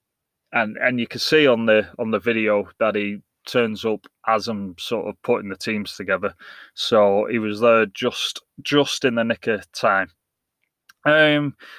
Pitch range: 110-135 Hz